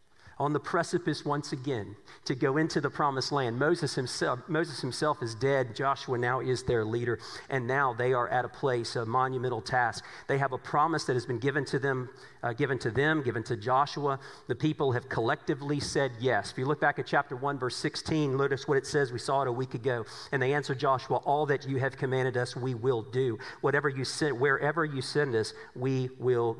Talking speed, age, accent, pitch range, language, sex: 215 wpm, 40-59, American, 130-165 Hz, English, male